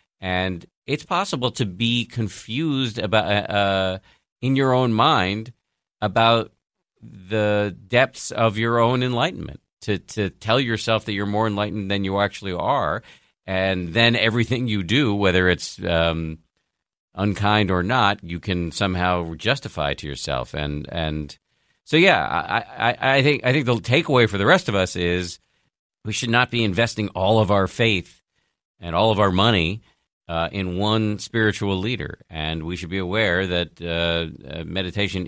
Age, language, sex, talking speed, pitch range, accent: 50-69, English, male, 160 wpm, 85-110 Hz, American